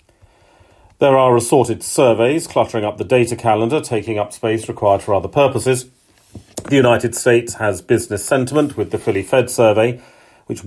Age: 40-59